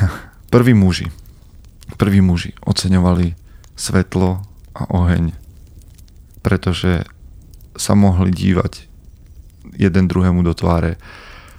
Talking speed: 85 wpm